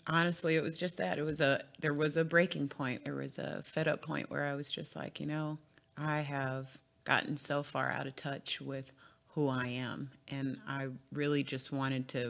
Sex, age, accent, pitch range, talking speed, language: female, 30-49, American, 135-155 Hz, 215 wpm, English